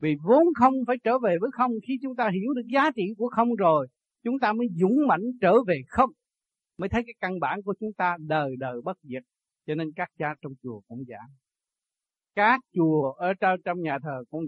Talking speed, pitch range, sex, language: 220 wpm, 155-230 Hz, male, Vietnamese